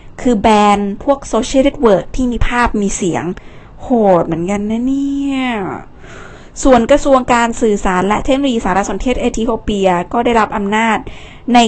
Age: 20-39